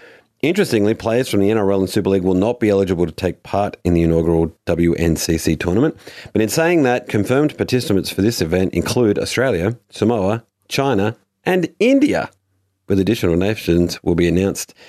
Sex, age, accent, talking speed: male, 30-49, Australian, 165 wpm